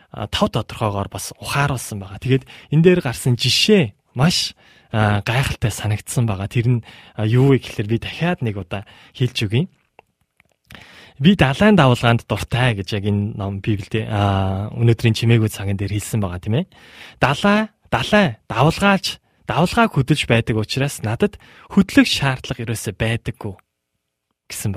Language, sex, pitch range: Korean, male, 105-140 Hz